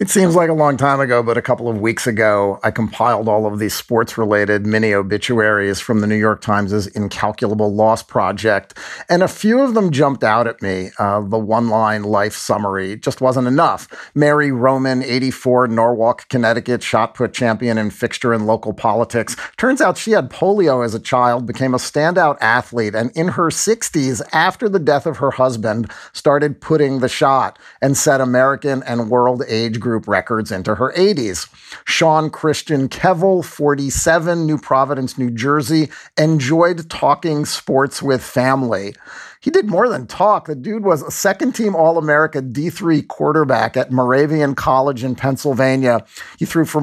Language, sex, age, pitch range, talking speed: English, male, 40-59, 115-160 Hz, 165 wpm